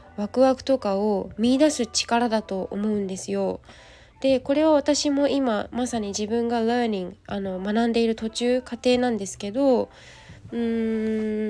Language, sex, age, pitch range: Japanese, female, 20-39, 205-275 Hz